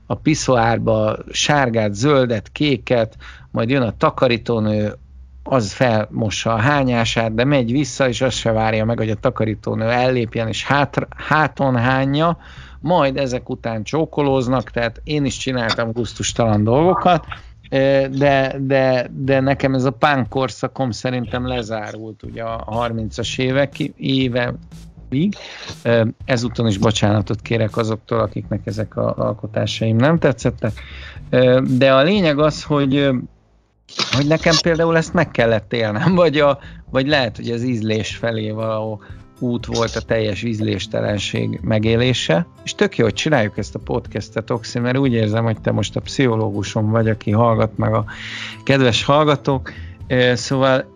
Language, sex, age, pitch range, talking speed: Hungarian, male, 50-69, 110-135 Hz, 140 wpm